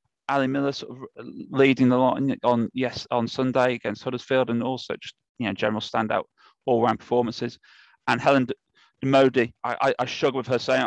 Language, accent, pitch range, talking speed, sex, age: English, British, 120-140 Hz, 195 wpm, male, 30-49